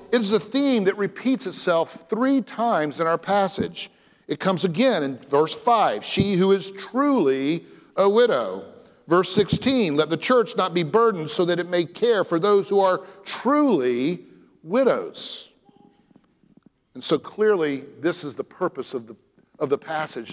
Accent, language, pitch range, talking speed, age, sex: American, English, 165-235 Hz, 160 wpm, 50-69, male